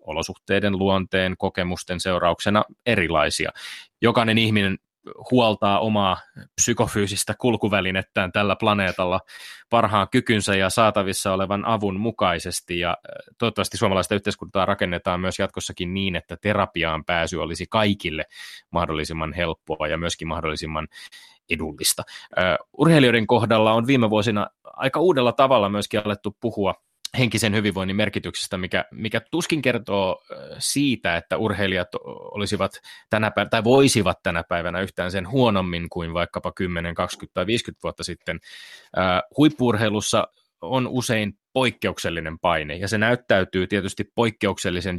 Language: Finnish